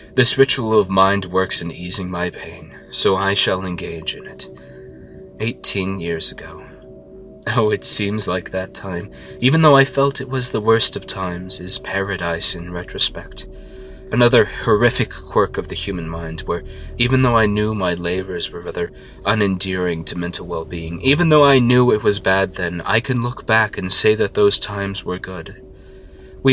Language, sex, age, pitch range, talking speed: English, male, 20-39, 85-120 Hz, 175 wpm